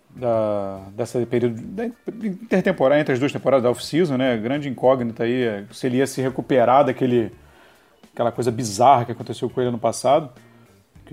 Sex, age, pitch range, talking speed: male, 40-59, 115-145 Hz, 165 wpm